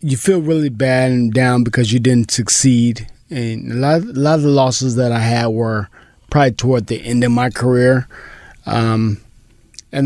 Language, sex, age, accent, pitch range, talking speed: English, male, 20-39, American, 120-145 Hz, 180 wpm